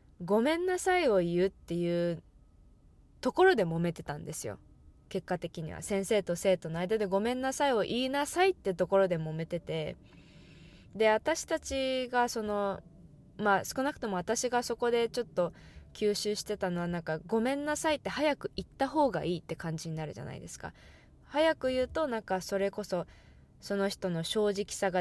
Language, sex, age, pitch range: English, female, 20-39, 170-230 Hz